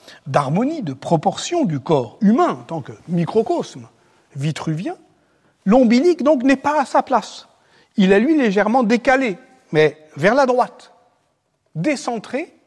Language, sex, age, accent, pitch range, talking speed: French, male, 60-79, French, 155-250 Hz, 135 wpm